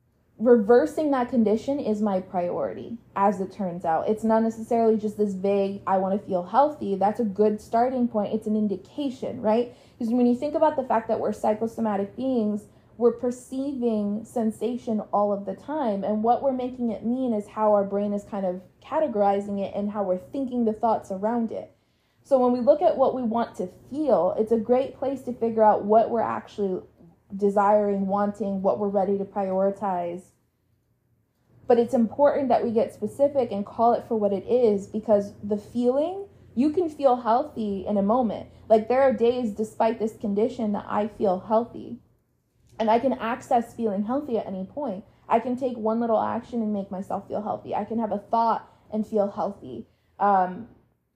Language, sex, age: English, female, 20-39